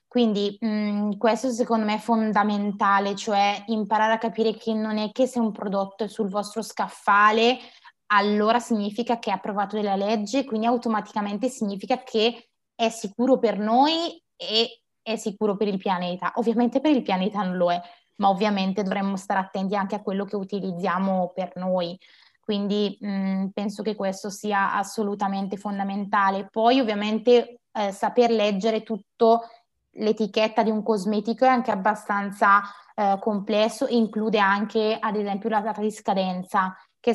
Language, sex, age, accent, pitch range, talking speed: Italian, female, 20-39, native, 200-225 Hz, 150 wpm